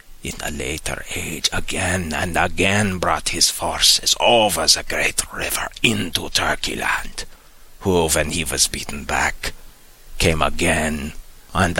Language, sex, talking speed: English, male, 125 wpm